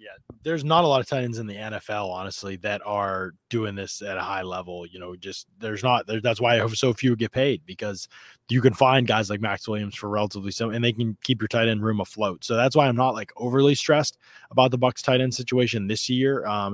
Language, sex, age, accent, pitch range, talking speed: English, male, 20-39, American, 105-125 Hz, 260 wpm